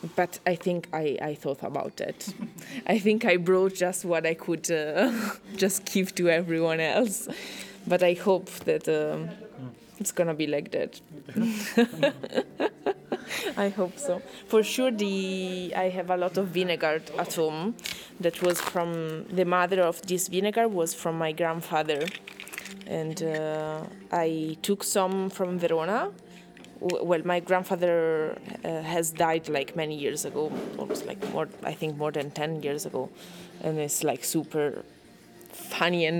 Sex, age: female, 20-39